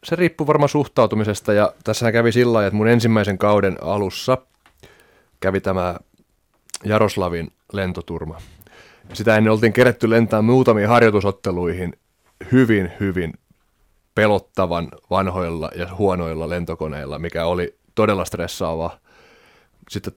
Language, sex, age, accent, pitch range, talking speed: Finnish, male, 30-49, native, 85-105 Hz, 110 wpm